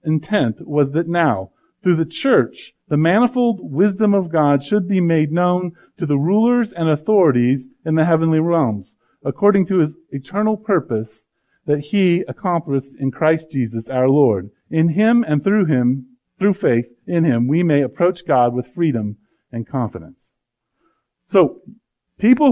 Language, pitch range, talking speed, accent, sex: English, 135-205 Hz, 150 wpm, American, male